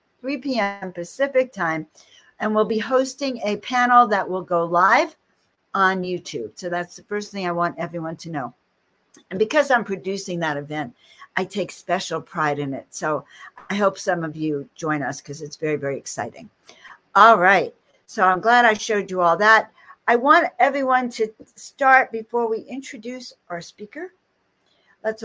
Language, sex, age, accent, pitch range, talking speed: English, female, 60-79, American, 175-215 Hz, 170 wpm